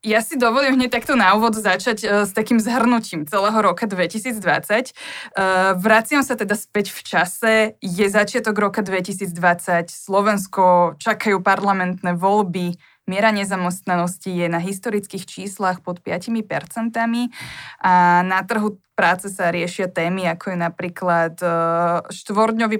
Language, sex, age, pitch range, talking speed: Slovak, female, 20-39, 180-220 Hz, 135 wpm